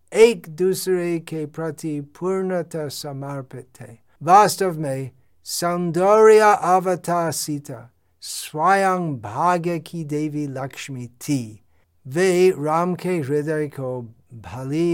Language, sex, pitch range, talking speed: Hindi, male, 125-170 Hz, 70 wpm